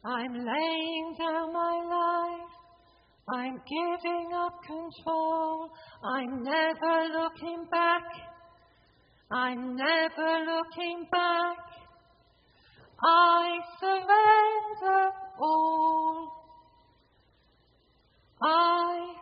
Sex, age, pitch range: female, 40-59, 310-340 Hz